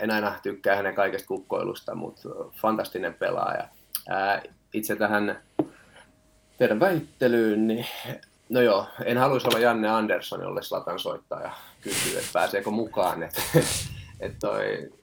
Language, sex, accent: Finnish, male, native